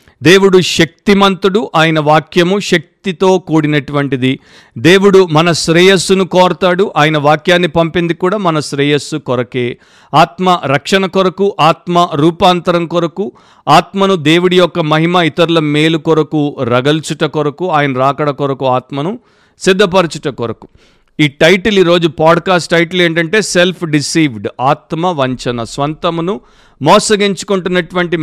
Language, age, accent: Telugu, 50-69, native